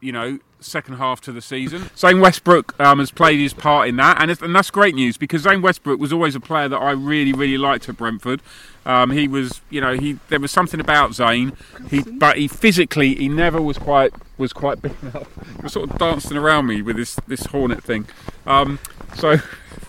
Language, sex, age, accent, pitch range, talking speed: English, male, 30-49, British, 120-155 Hz, 220 wpm